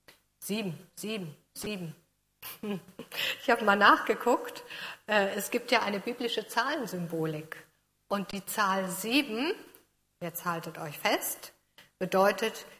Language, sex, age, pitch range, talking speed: German, female, 50-69, 180-235 Hz, 105 wpm